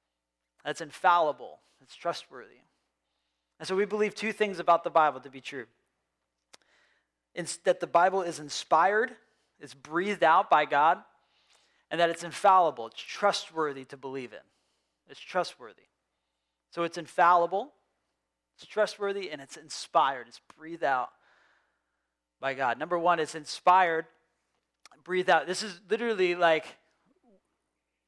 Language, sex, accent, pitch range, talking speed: English, male, American, 145-210 Hz, 130 wpm